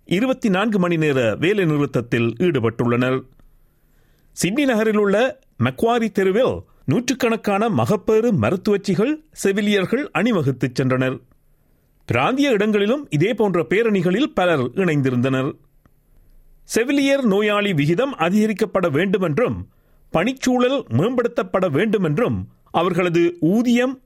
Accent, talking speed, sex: native, 85 wpm, male